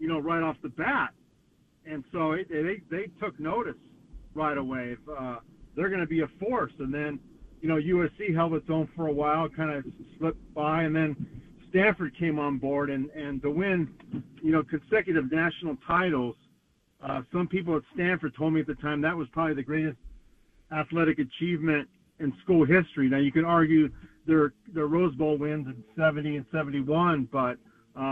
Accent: American